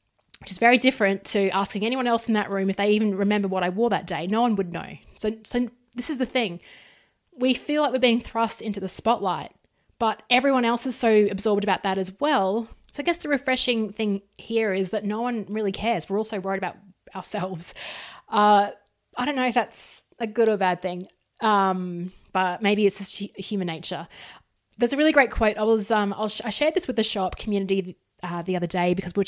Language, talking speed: English, 225 wpm